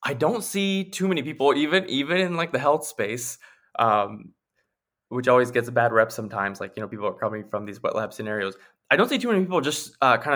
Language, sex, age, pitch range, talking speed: English, male, 20-39, 115-145 Hz, 235 wpm